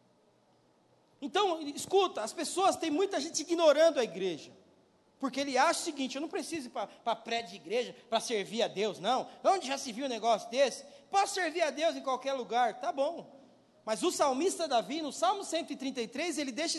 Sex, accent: male, Brazilian